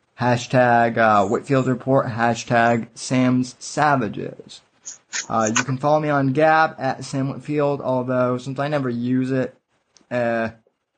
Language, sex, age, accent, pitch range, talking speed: English, male, 20-39, American, 120-150 Hz, 130 wpm